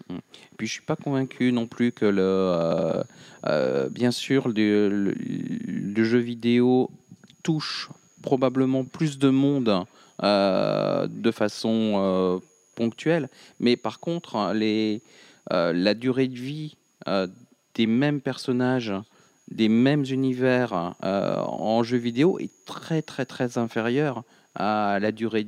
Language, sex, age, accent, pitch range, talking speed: French, male, 40-59, French, 100-125 Hz, 125 wpm